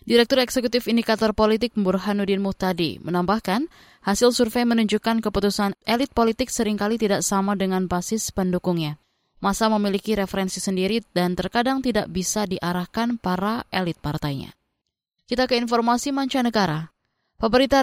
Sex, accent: female, native